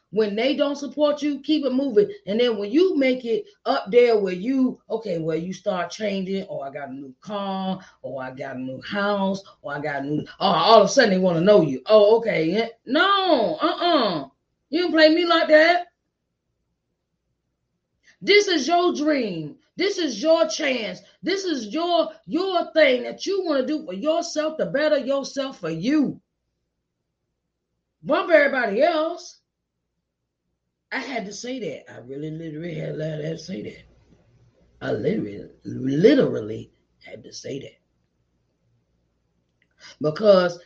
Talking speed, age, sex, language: 165 wpm, 30-49, female, English